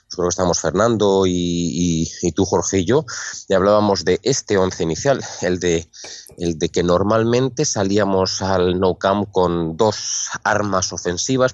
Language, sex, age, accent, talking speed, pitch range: Spanish, male, 20-39, Spanish, 160 wpm, 90-110 Hz